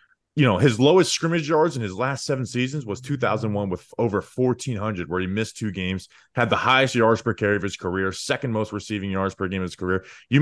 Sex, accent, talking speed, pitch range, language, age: male, American, 230 wpm, 105-150 Hz, English, 20-39